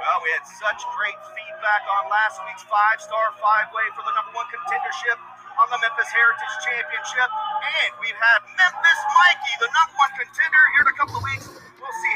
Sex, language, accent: male, English, American